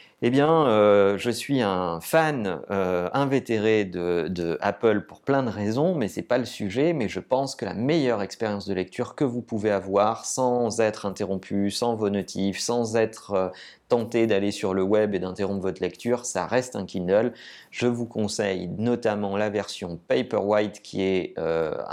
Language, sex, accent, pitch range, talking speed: French, male, French, 95-120 Hz, 185 wpm